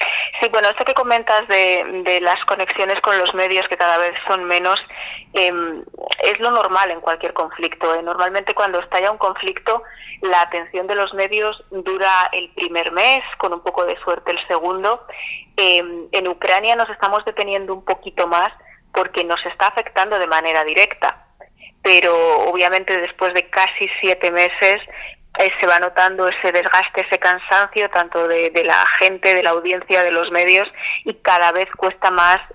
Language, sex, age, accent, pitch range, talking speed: Spanish, female, 20-39, Spanish, 175-195 Hz, 170 wpm